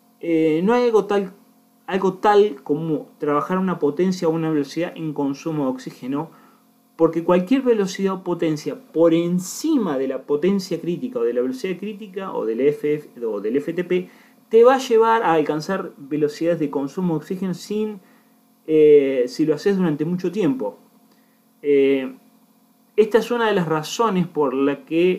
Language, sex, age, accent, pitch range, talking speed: Spanish, male, 30-49, Argentinian, 150-220 Hz, 165 wpm